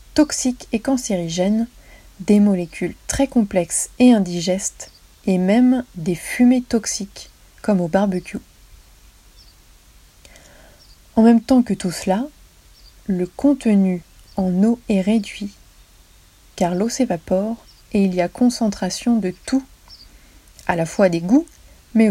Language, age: French, 30-49